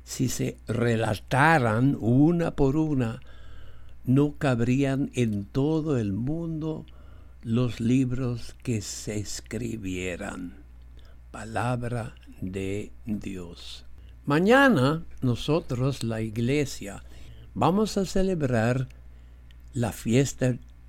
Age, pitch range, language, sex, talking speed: 60-79, 80-130 Hz, English, male, 85 wpm